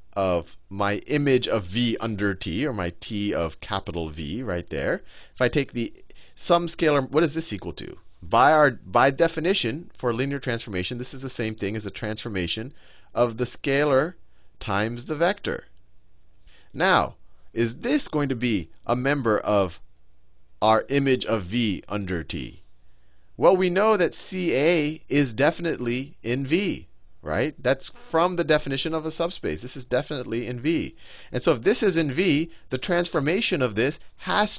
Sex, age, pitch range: male, 30-49, 95-145 Hz